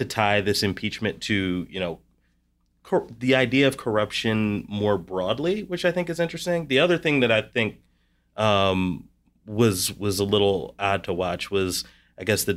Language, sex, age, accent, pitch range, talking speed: English, male, 30-49, American, 95-115 Hz, 175 wpm